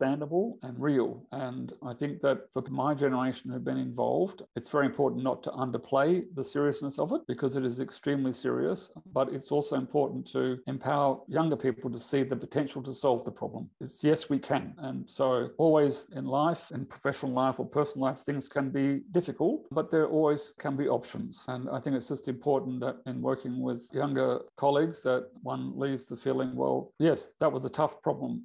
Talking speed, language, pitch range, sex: 195 wpm, English, 125-145 Hz, male